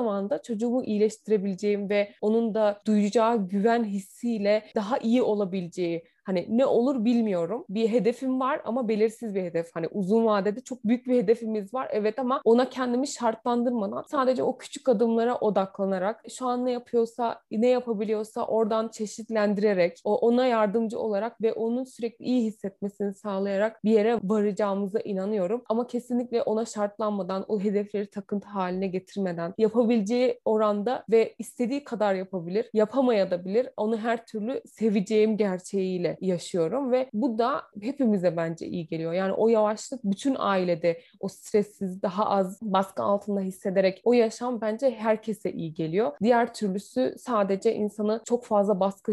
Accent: native